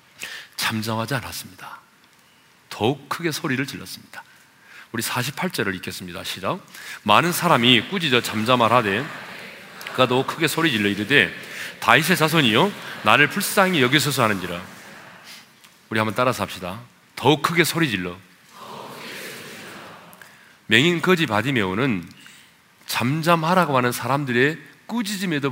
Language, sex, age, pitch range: Korean, male, 40-59, 115-190 Hz